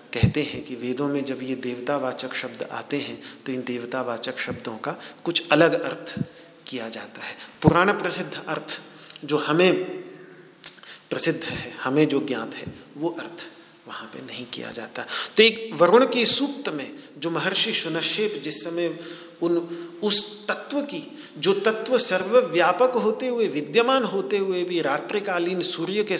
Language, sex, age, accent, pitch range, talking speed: Hindi, male, 40-59, native, 155-225 Hz, 155 wpm